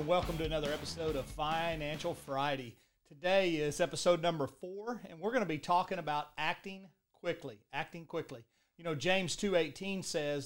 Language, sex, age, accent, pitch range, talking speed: English, male, 40-59, American, 150-175 Hz, 160 wpm